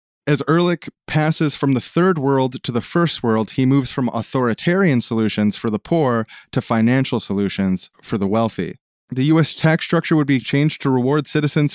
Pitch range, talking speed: 115-150 Hz, 180 wpm